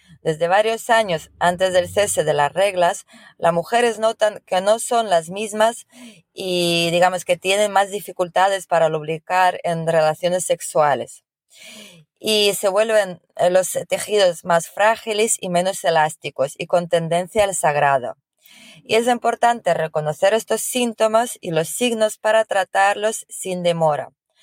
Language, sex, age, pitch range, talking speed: Spanish, female, 20-39, 170-215 Hz, 140 wpm